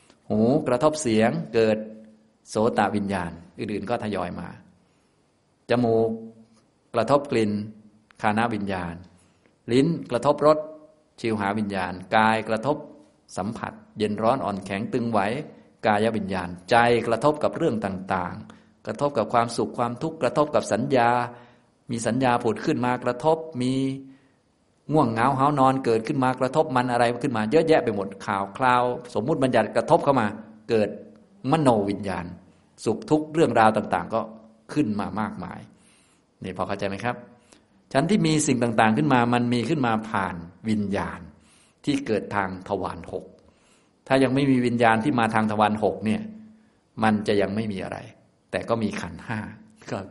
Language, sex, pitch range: Thai, male, 105-130 Hz